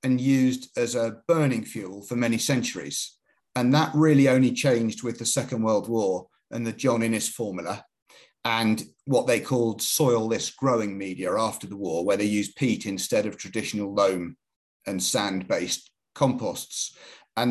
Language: English